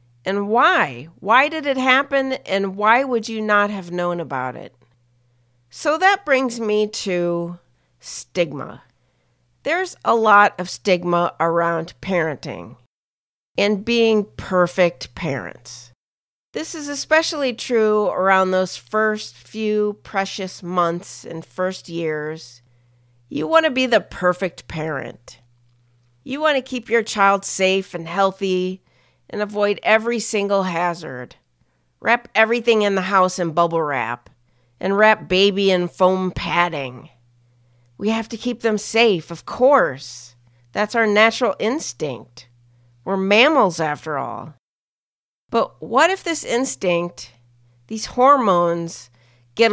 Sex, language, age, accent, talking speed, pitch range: female, English, 40-59, American, 125 wpm, 135-215 Hz